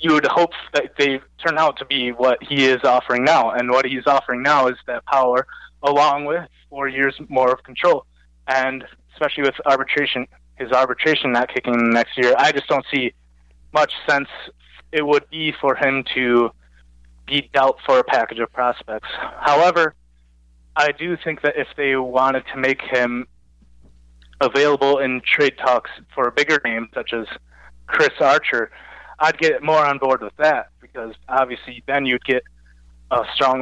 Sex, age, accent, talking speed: male, 20-39, American, 170 wpm